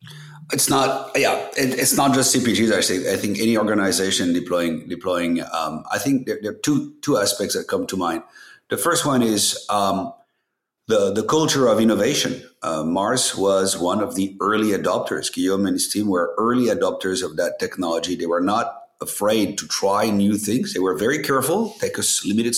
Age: 50-69